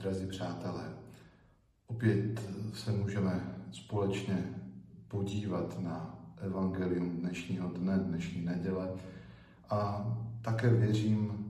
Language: Slovak